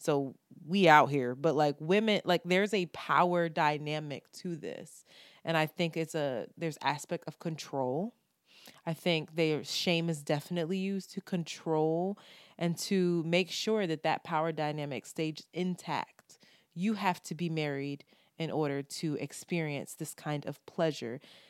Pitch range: 150-180 Hz